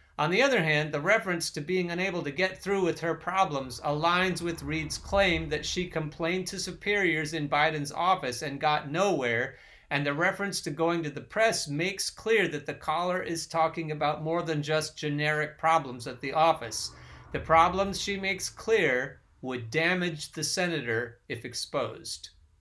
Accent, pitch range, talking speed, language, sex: American, 145-180 Hz, 175 wpm, English, male